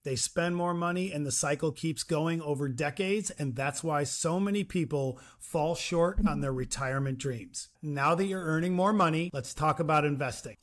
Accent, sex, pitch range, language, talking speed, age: American, male, 140-175 Hz, English, 185 wpm, 40-59